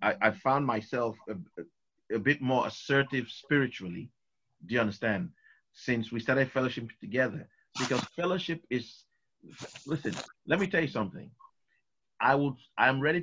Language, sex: English, male